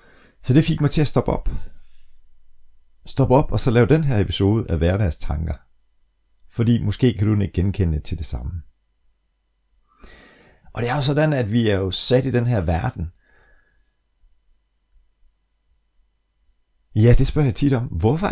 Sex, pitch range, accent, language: male, 75-105 Hz, native, Danish